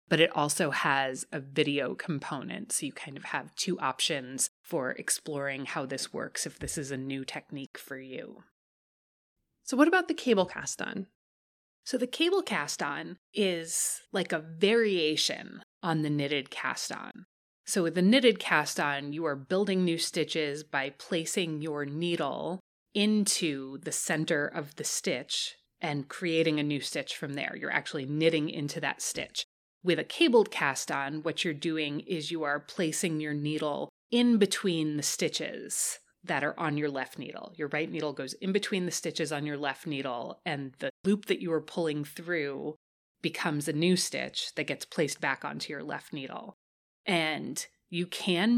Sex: female